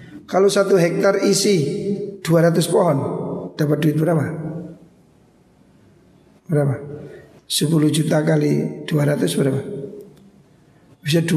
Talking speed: 85 wpm